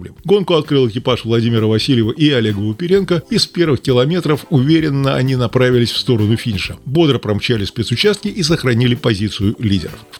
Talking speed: 155 wpm